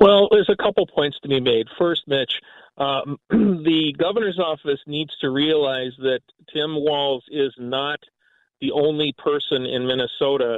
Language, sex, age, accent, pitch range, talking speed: English, male, 40-59, American, 130-175 Hz, 155 wpm